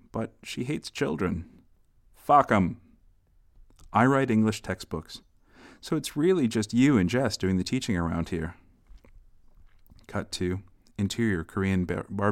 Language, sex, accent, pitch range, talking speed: English, male, American, 85-110 Hz, 130 wpm